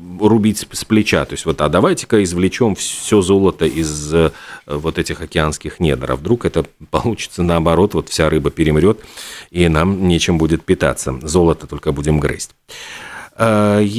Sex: male